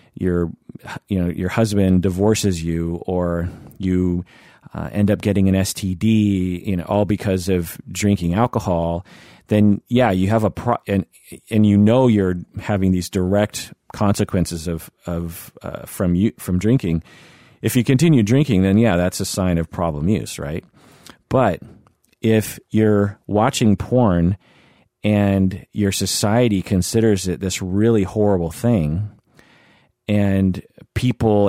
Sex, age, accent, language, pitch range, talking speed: male, 40-59, American, English, 90-110 Hz, 140 wpm